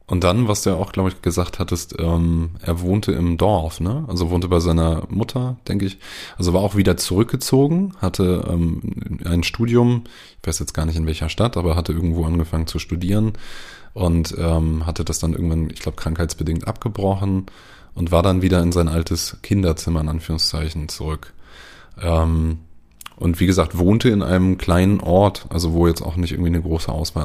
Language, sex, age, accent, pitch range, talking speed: German, male, 20-39, German, 85-95 Hz, 185 wpm